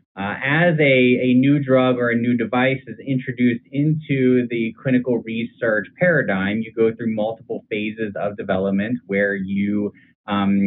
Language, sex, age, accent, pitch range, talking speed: English, male, 20-39, American, 105-130 Hz, 150 wpm